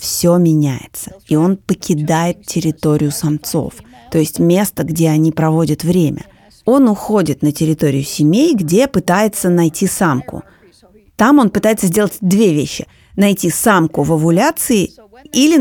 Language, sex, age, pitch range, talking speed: Russian, female, 30-49, 160-200 Hz, 130 wpm